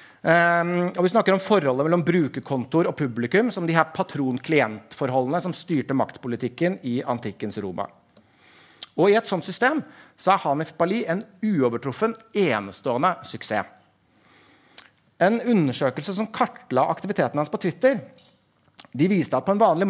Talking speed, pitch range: 135 wpm, 140-195 Hz